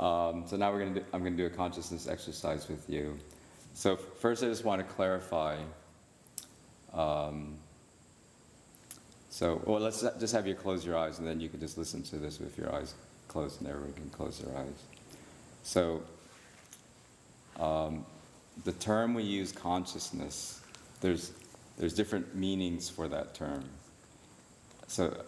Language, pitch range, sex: English, 80-90 Hz, male